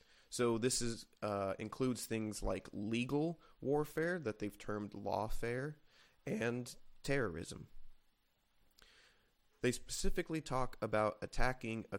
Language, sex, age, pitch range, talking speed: English, male, 30-49, 105-125 Hz, 105 wpm